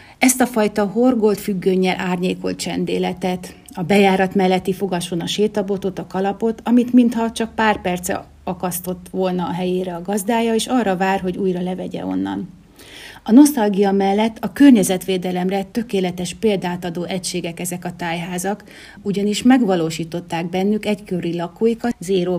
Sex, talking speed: female, 135 wpm